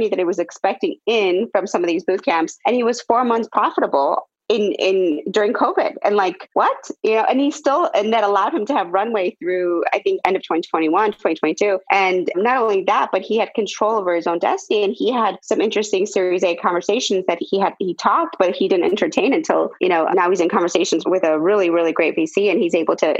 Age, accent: 30-49, American